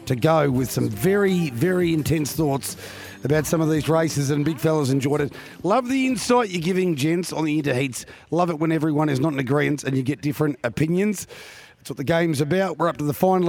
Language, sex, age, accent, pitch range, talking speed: English, male, 40-59, Australian, 140-170 Hz, 220 wpm